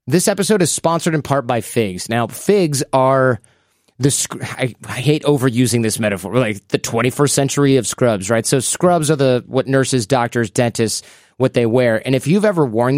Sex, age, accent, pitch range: male, 30-49, American, 120-150 Hz